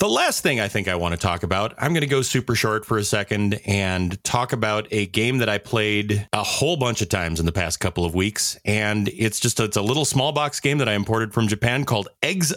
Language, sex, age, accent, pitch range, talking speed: English, male, 30-49, American, 100-145 Hz, 260 wpm